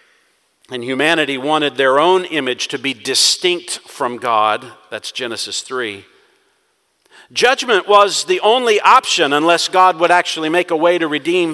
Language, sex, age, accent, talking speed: English, male, 50-69, American, 145 wpm